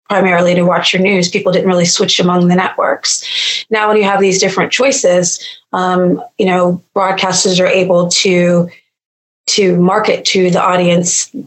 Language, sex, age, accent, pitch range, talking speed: English, female, 30-49, American, 175-195 Hz, 160 wpm